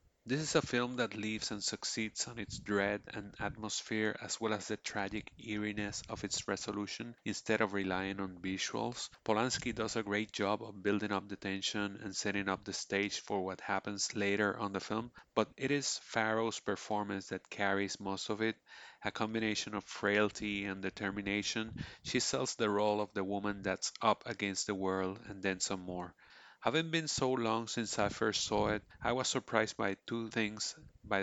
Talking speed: 185 wpm